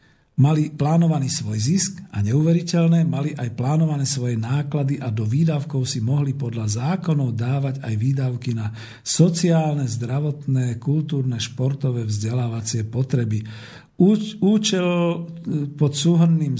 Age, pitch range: 50-69, 130-155 Hz